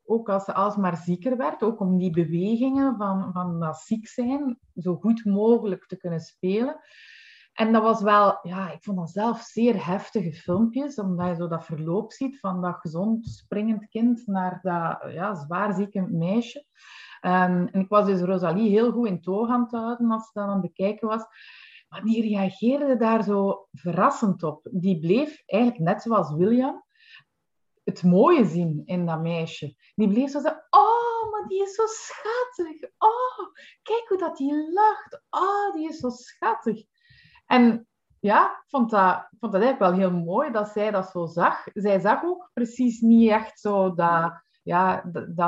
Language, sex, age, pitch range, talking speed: Dutch, female, 30-49, 180-240 Hz, 180 wpm